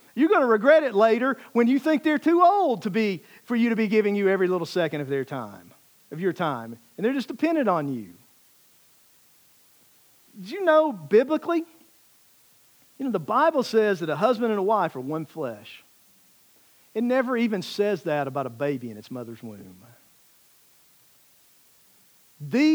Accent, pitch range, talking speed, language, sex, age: American, 160-275 Hz, 170 wpm, English, male, 50-69